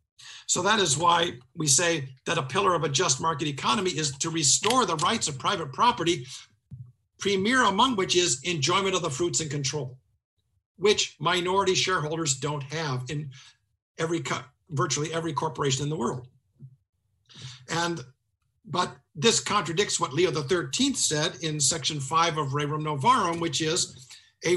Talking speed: 155 wpm